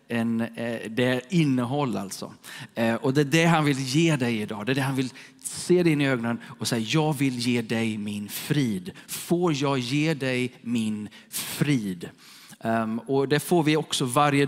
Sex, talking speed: male, 185 wpm